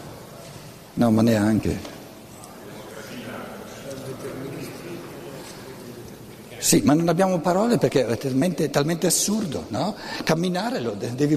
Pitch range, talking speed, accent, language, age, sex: 115-150 Hz, 90 wpm, native, Italian, 60-79, male